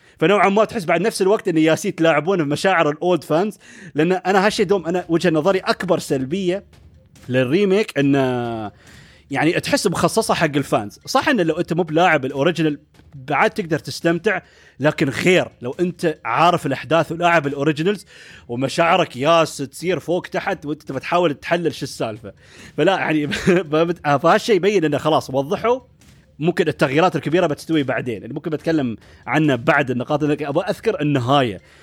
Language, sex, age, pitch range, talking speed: Arabic, male, 30-49, 145-190 Hz, 140 wpm